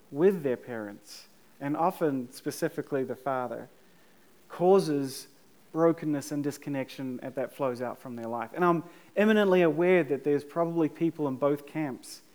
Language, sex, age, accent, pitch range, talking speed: English, male, 30-49, Australian, 140-185 Hz, 140 wpm